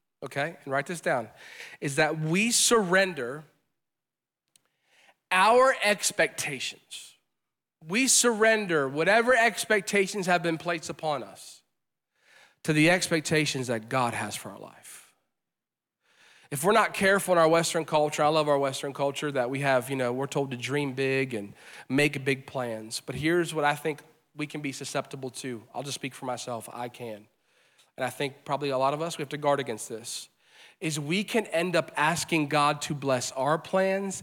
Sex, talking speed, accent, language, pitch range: male, 170 wpm, American, English, 140-210 Hz